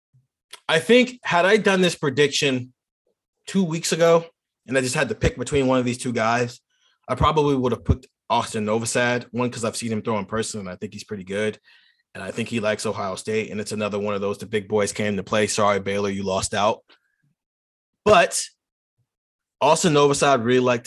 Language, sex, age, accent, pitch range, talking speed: English, male, 30-49, American, 110-140 Hz, 205 wpm